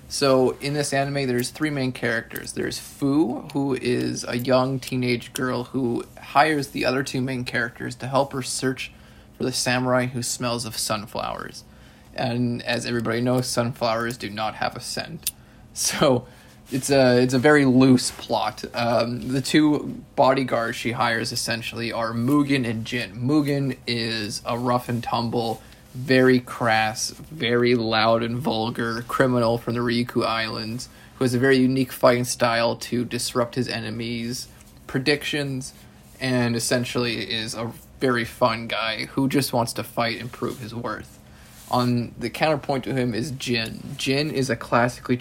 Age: 20-39